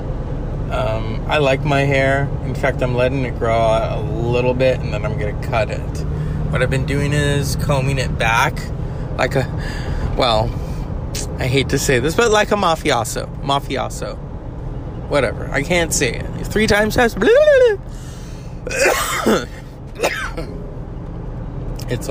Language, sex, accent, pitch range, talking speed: English, male, American, 120-155 Hz, 140 wpm